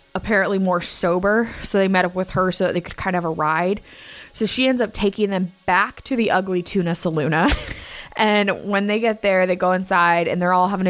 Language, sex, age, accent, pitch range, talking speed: English, female, 20-39, American, 185-215 Hz, 230 wpm